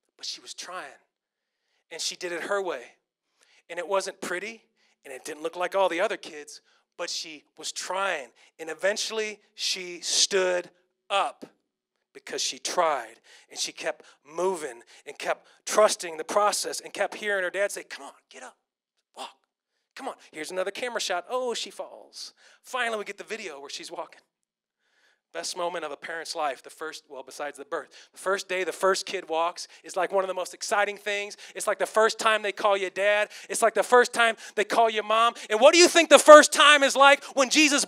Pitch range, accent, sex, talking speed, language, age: 185-270 Hz, American, male, 205 wpm, English, 30-49